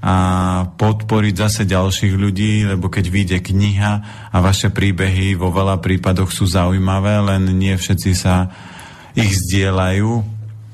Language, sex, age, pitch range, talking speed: Slovak, male, 30-49, 95-105 Hz, 130 wpm